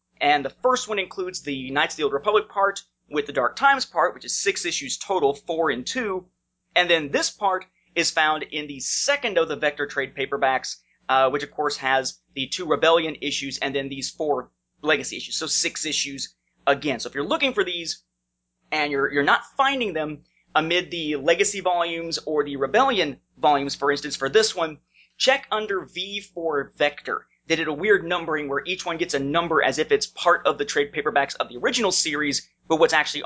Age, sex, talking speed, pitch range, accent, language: 30-49, male, 205 wpm, 140-195 Hz, American, English